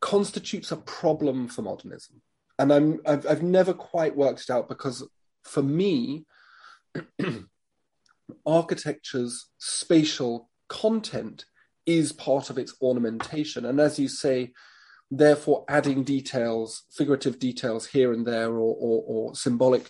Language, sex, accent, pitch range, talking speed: English, male, British, 125-150 Hz, 125 wpm